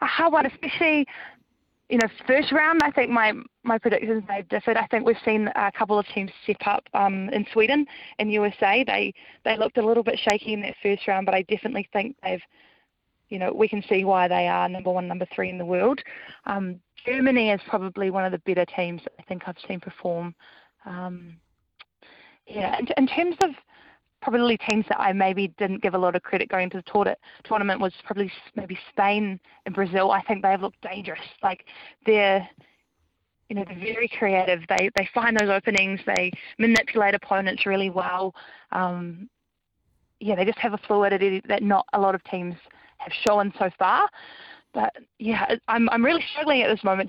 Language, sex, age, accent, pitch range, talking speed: English, female, 20-39, Australian, 190-225 Hz, 190 wpm